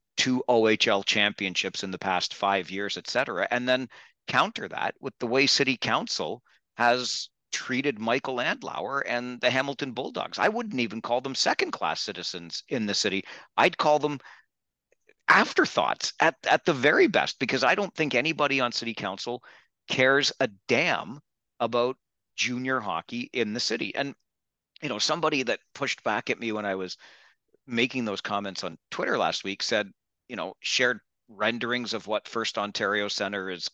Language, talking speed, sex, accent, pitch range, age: English, 165 wpm, male, American, 100-130 Hz, 40-59